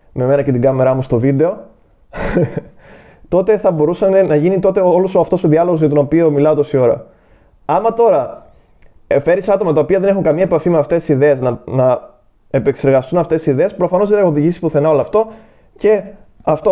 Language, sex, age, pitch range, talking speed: Greek, male, 20-39, 135-175 Hz, 195 wpm